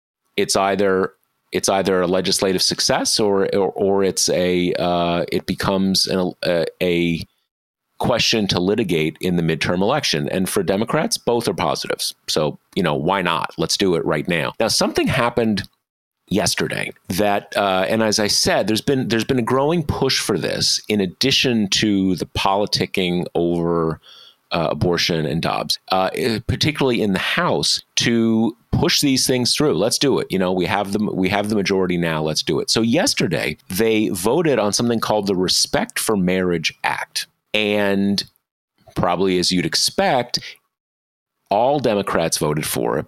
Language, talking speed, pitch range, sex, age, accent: English, 165 wpm, 90-110 Hz, male, 40-59, American